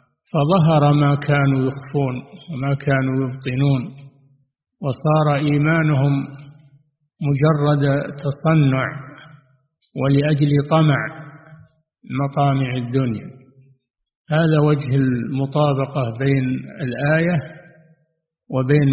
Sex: male